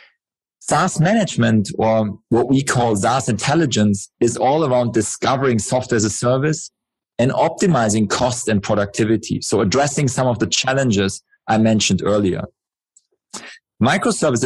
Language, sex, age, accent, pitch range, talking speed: English, male, 40-59, German, 115-145 Hz, 130 wpm